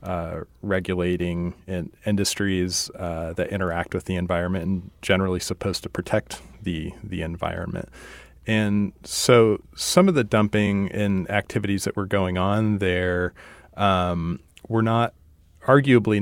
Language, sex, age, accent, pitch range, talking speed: English, male, 40-59, American, 90-100 Hz, 125 wpm